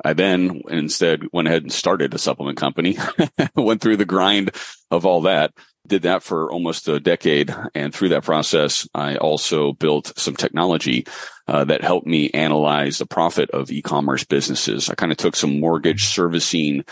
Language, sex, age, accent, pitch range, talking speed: English, male, 30-49, American, 70-85 Hz, 175 wpm